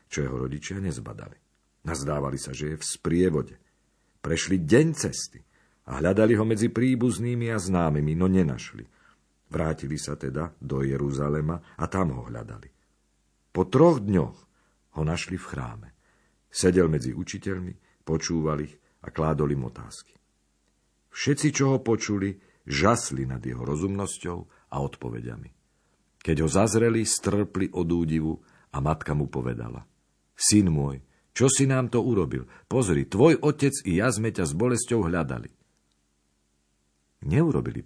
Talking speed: 135 wpm